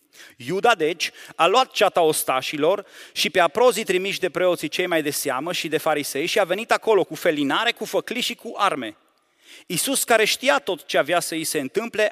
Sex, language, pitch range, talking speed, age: male, Romanian, 170-250 Hz, 200 wpm, 30-49